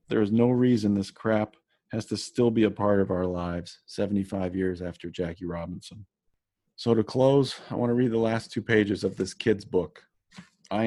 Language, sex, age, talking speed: English, male, 40-59, 200 wpm